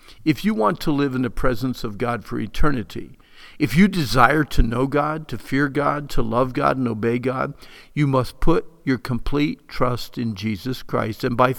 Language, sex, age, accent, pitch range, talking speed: English, male, 50-69, American, 125-160 Hz, 195 wpm